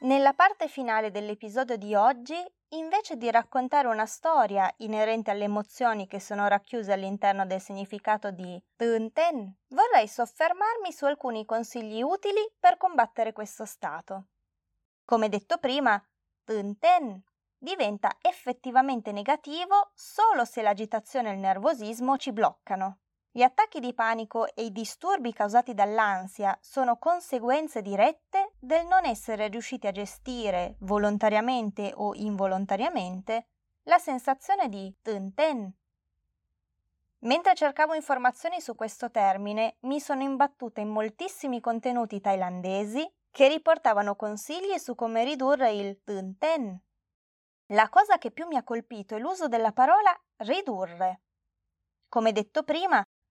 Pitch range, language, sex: 205-290 Hz, Italian, female